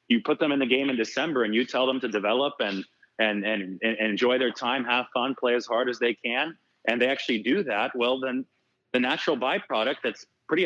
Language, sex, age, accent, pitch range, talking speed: English, male, 30-49, American, 105-130 Hz, 230 wpm